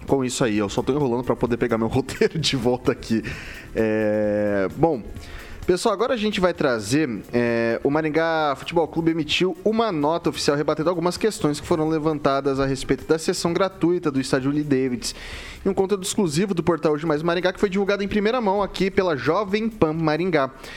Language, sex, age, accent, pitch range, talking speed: Portuguese, male, 20-39, Brazilian, 125-165 Hz, 195 wpm